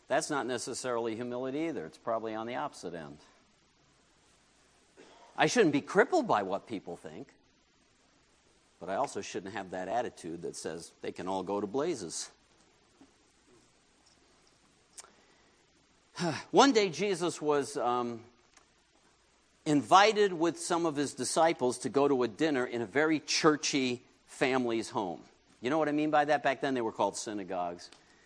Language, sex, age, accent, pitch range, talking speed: English, male, 50-69, American, 120-180 Hz, 145 wpm